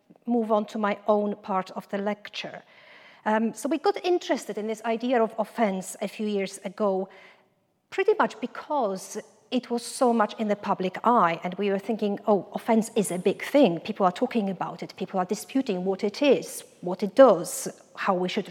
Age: 40-59